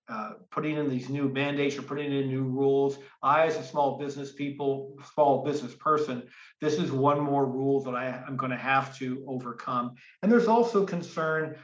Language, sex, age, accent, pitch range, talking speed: English, male, 50-69, American, 130-145 Hz, 185 wpm